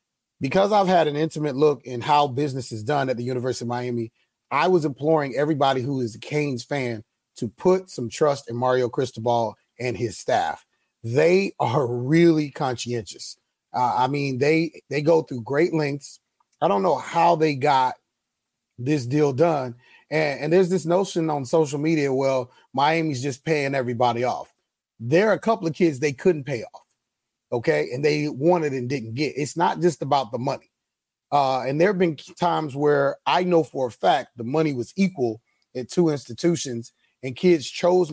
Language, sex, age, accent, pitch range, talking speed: English, male, 30-49, American, 130-165 Hz, 185 wpm